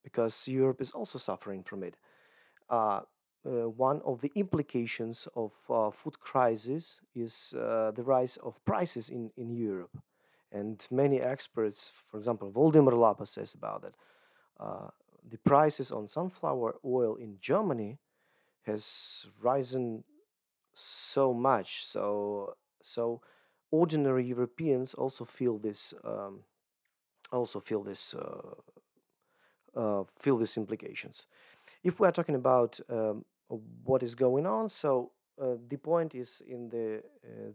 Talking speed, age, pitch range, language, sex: 130 wpm, 40-59, 115-140 Hz, English, male